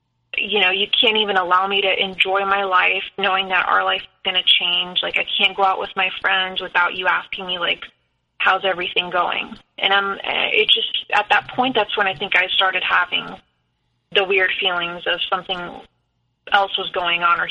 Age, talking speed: 20-39, 200 wpm